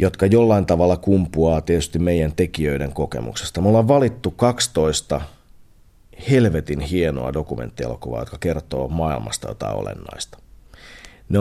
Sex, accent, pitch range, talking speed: male, native, 80-100 Hz, 110 wpm